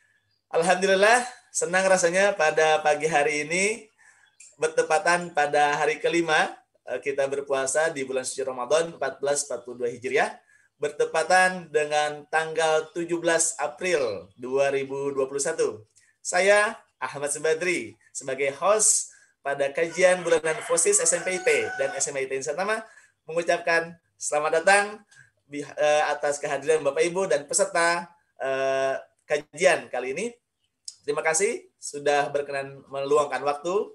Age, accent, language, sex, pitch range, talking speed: 20-39, native, Indonesian, male, 140-190 Hz, 100 wpm